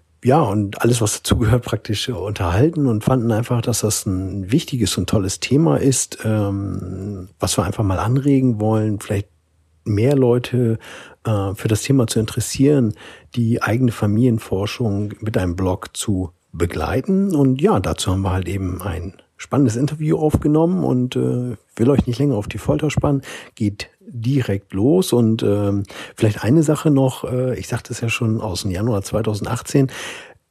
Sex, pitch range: male, 100-125 Hz